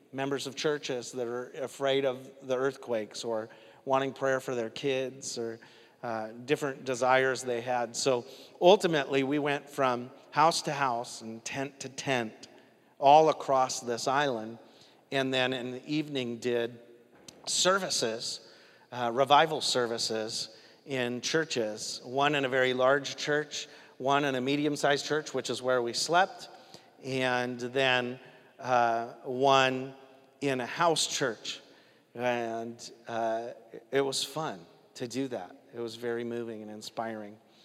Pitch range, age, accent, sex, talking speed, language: 120-155 Hz, 40-59, American, male, 140 wpm, English